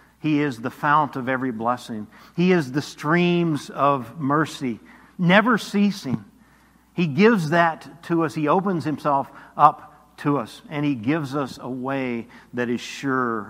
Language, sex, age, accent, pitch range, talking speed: English, male, 50-69, American, 120-155 Hz, 155 wpm